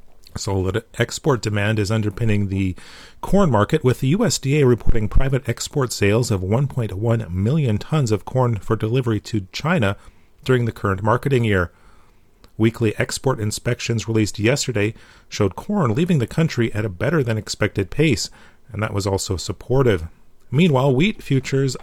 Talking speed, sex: 150 wpm, male